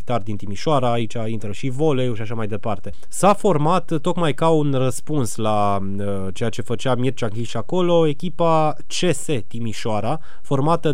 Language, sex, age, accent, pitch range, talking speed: Romanian, male, 20-39, native, 120-160 Hz, 155 wpm